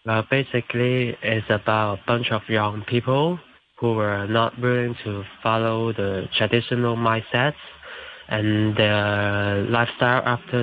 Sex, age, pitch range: male, 20-39, 115-130 Hz